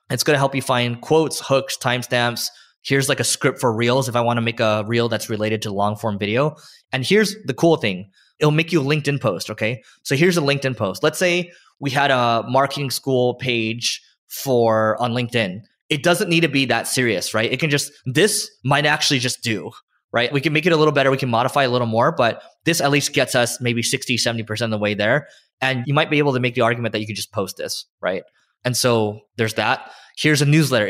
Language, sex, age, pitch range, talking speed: English, male, 20-39, 110-140 Hz, 235 wpm